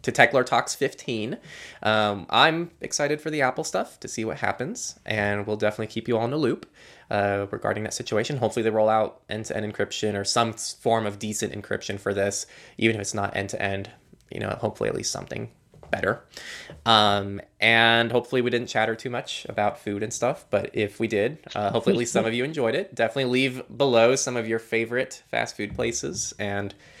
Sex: male